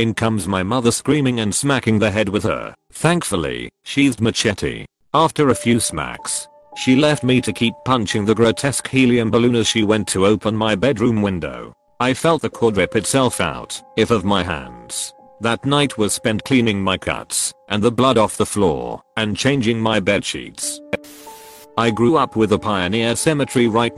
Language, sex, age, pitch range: English, male, 40-59, 105-130 Hz